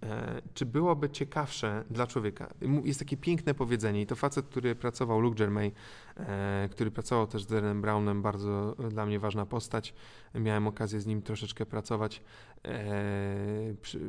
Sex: male